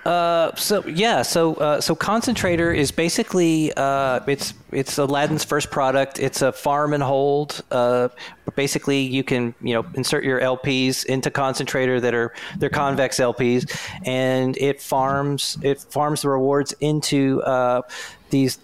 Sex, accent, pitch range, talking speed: male, American, 125-145 Hz, 150 wpm